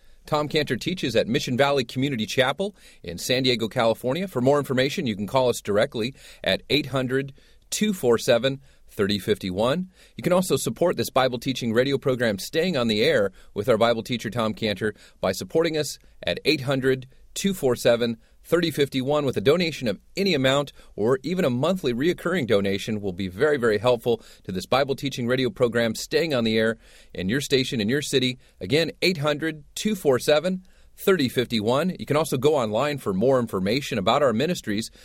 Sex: male